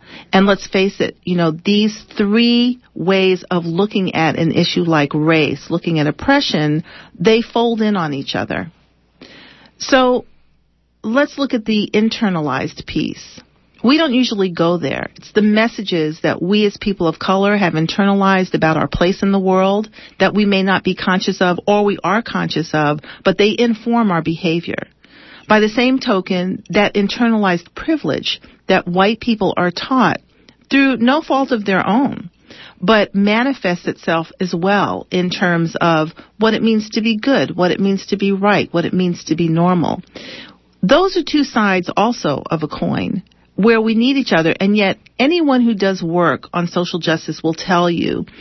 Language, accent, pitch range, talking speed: English, American, 175-225 Hz, 175 wpm